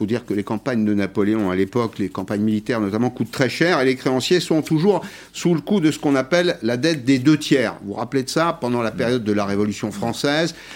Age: 50-69